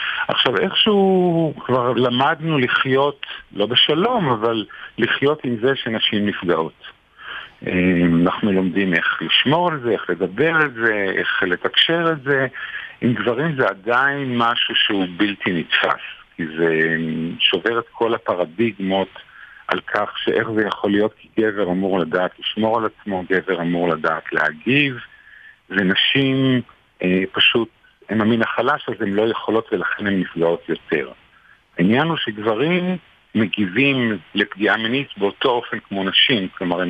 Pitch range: 90-125 Hz